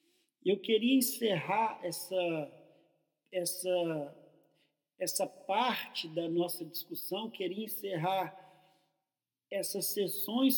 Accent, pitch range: Brazilian, 180-220 Hz